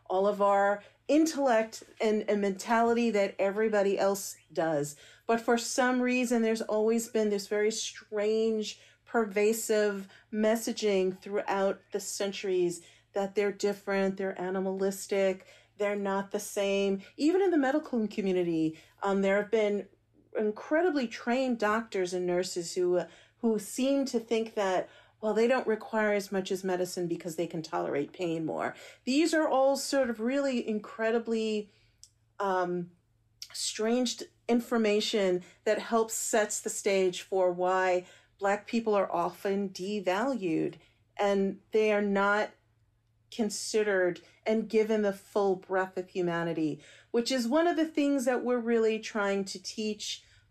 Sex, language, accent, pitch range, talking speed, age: female, English, American, 185-225 Hz, 140 wpm, 40-59